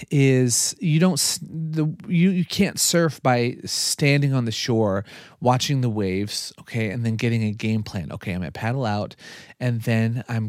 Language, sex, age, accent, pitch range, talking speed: English, male, 30-49, American, 110-145 Hz, 185 wpm